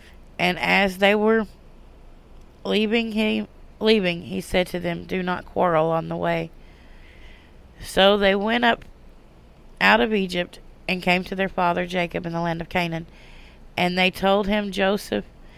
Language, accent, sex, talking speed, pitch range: English, American, female, 155 wpm, 170-205 Hz